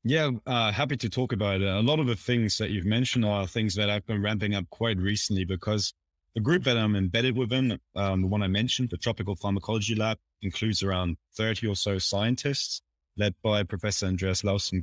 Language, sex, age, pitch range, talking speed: English, male, 20-39, 95-115 Hz, 205 wpm